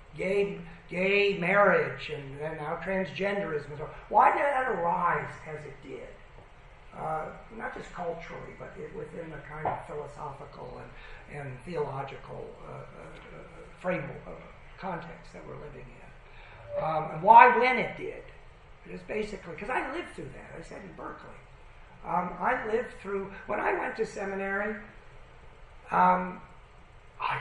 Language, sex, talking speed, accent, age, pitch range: English, male, 140 wpm, American, 50-69, 165-220 Hz